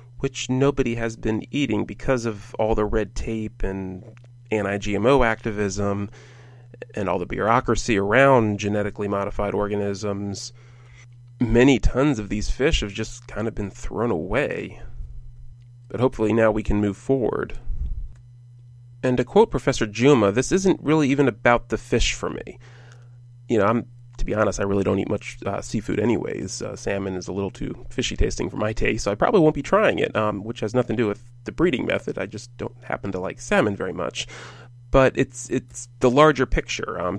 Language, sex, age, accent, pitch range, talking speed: English, male, 30-49, American, 105-130 Hz, 180 wpm